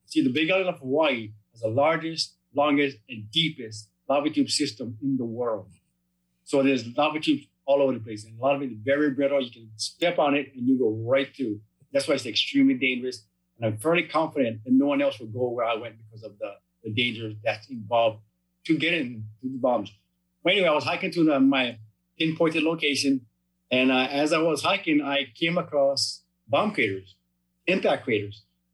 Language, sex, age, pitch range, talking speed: English, male, 30-49, 110-160 Hz, 200 wpm